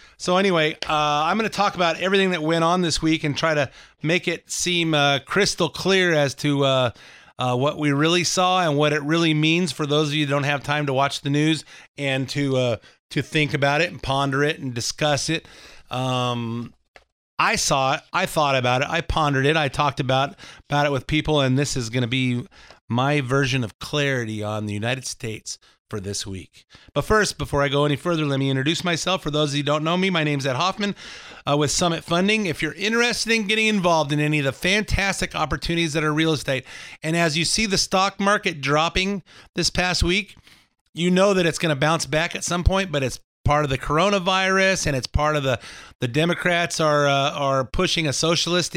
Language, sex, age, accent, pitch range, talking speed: English, male, 30-49, American, 140-175 Hz, 225 wpm